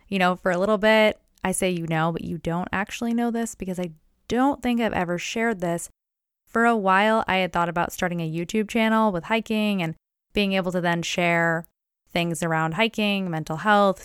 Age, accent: 20-39, American